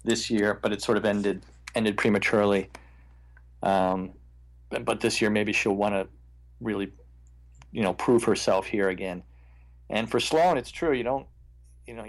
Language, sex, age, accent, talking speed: English, male, 40-59, American, 160 wpm